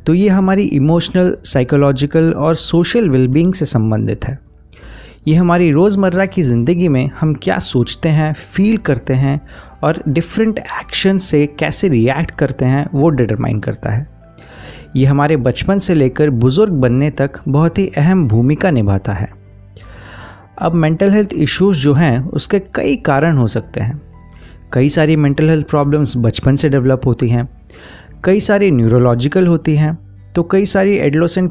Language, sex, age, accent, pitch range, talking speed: Hindi, male, 30-49, native, 125-175 Hz, 155 wpm